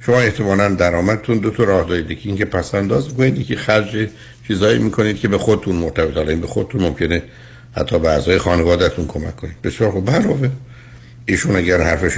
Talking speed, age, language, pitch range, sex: 170 wpm, 60-79, Persian, 80-120 Hz, male